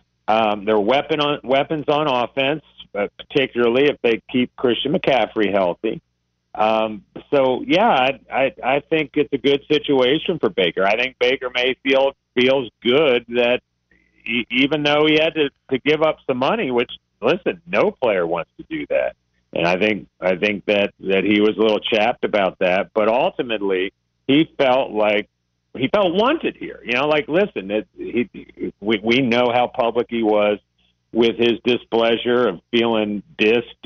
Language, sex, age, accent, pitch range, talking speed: English, male, 50-69, American, 100-130 Hz, 170 wpm